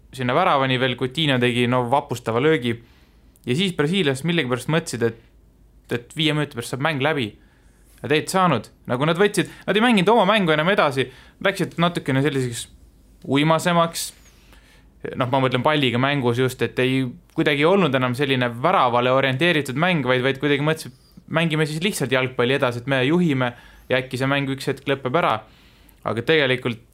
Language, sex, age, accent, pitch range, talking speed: English, male, 20-39, Finnish, 120-150 Hz, 170 wpm